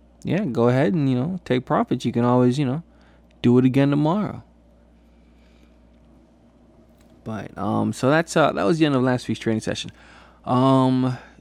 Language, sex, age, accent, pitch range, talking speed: English, male, 20-39, American, 80-130 Hz, 170 wpm